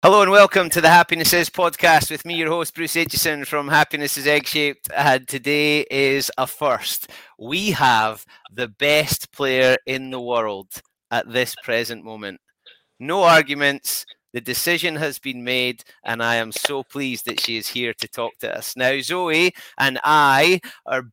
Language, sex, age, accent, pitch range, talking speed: English, male, 30-49, British, 120-150 Hz, 175 wpm